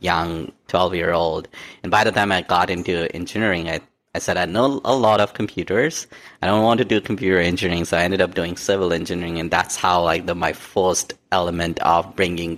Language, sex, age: English, male, 30-49